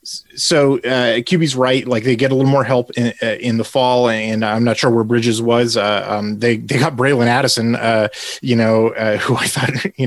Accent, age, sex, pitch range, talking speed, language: American, 30-49, male, 105-130 Hz, 225 wpm, English